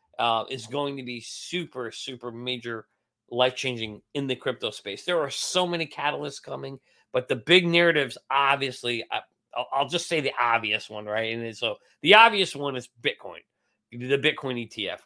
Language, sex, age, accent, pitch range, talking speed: English, male, 40-59, American, 125-160 Hz, 165 wpm